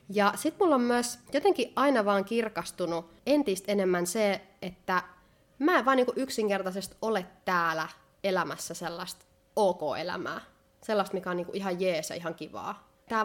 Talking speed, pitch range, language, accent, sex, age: 135 wpm, 175-225 Hz, Finnish, native, female, 20-39